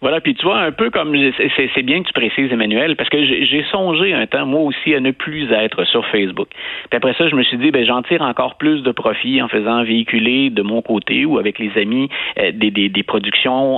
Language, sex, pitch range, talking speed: French, male, 115-165 Hz, 250 wpm